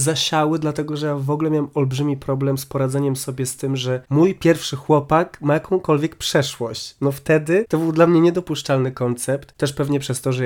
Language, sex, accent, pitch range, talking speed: Polish, male, native, 120-145 Hz, 195 wpm